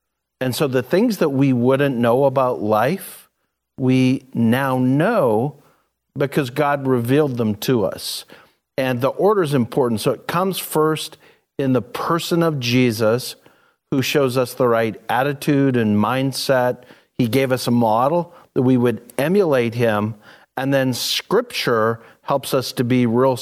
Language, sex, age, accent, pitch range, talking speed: English, male, 50-69, American, 120-140 Hz, 150 wpm